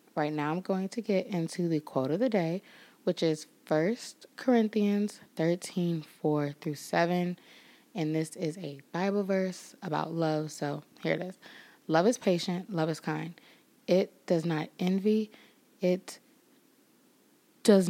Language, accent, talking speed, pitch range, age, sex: English, American, 140 wpm, 165-225 Hz, 20-39, female